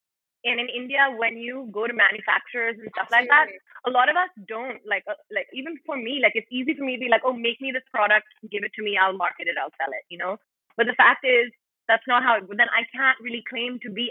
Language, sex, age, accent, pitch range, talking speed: English, female, 20-39, Indian, 200-245 Hz, 265 wpm